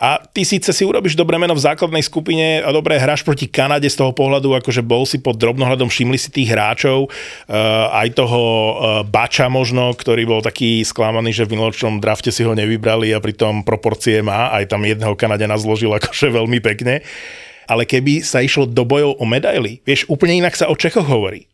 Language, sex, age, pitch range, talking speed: Slovak, male, 30-49, 115-150 Hz, 190 wpm